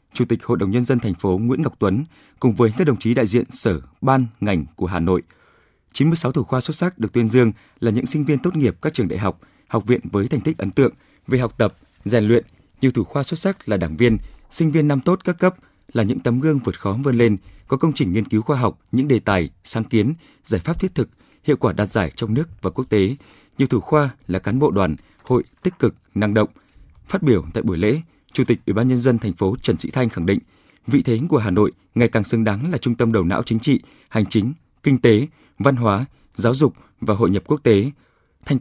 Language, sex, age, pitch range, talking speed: Vietnamese, male, 20-39, 100-140 Hz, 250 wpm